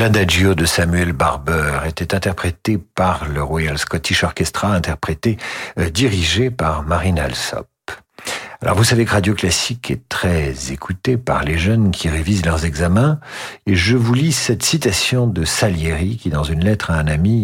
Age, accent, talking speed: 50-69, French, 160 wpm